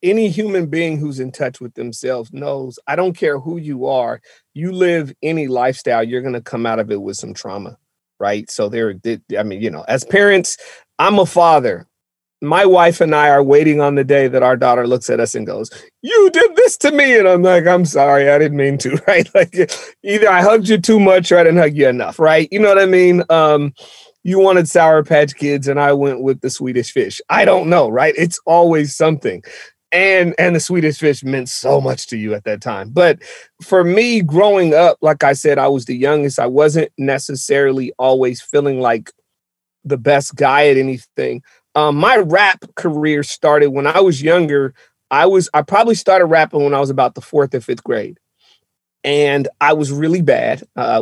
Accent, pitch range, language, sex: American, 135-175 Hz, English, male